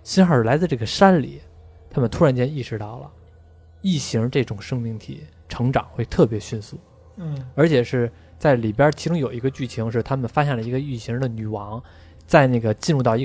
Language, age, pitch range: Chinese, 20-39, 110-140 Hz